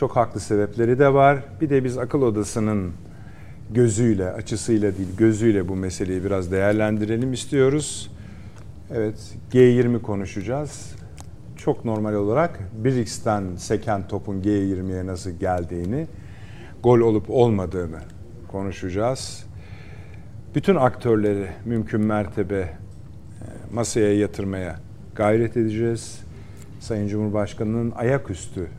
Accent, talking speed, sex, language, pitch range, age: native, 95 wpm, male, Turkish, 100-120 Hz, 50-69